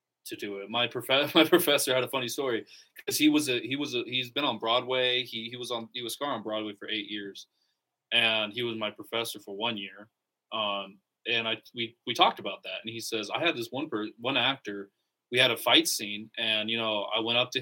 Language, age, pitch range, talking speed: English, 20-39, 110-130 Hz, 240 wpm